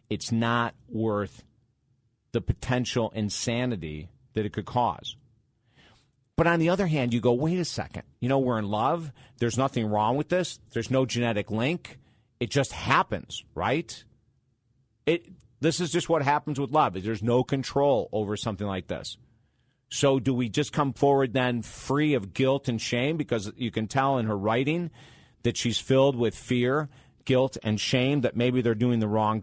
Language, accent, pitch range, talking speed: English, American, 110-135 Hz, 175 wpm